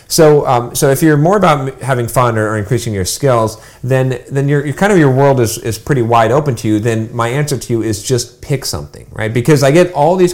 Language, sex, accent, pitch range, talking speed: English, male, American, 115-155 Hz, 245 wpm